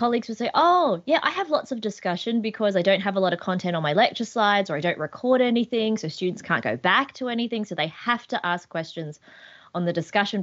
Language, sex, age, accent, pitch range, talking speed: English, female, 20-39, Australian, 170-220 Hz, 245 wpm